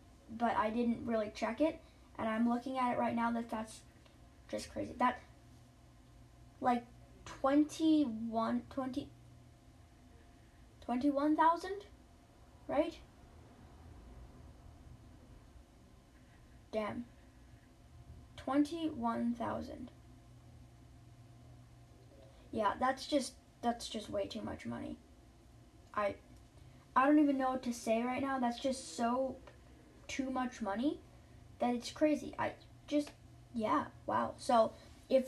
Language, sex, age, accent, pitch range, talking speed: English, female, 10-29, American, 230-290 Hz, 100 wpm